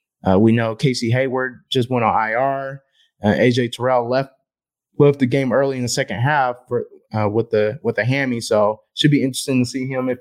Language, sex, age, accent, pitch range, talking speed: English, male, 20-39, American, 120-135 Hz, 220 wpm